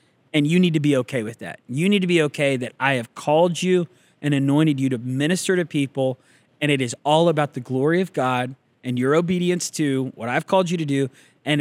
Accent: American